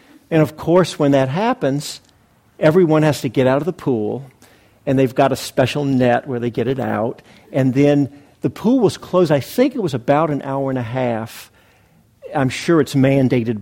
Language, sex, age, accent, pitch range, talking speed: English, male, 50-69, American, 125-165 Hz, 200 wpm